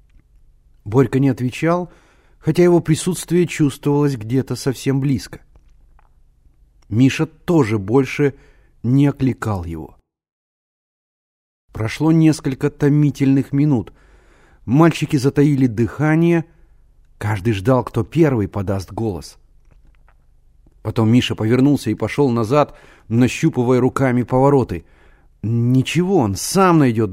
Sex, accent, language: male, native, Russian